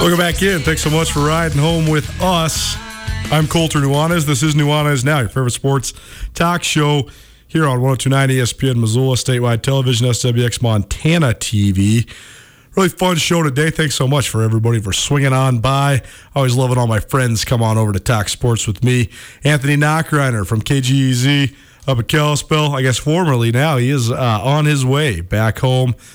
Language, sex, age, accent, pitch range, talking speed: English, male, 40-59, American, 115-145 Hz, 180 wpm